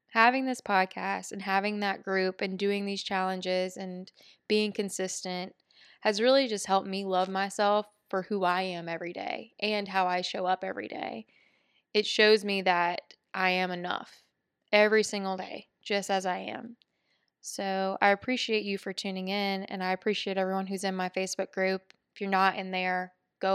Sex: female